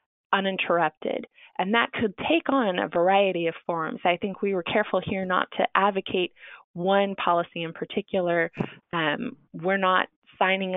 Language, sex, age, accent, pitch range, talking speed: English, female, 20-39, American, 165-195 Hz, 150 wpm